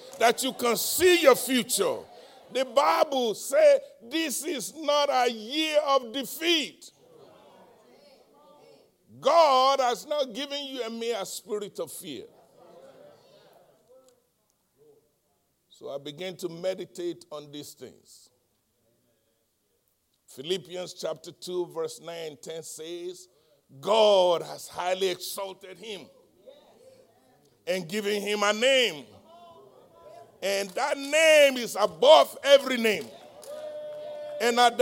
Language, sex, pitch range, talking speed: English, male, 200-305 Hz, 105 wpm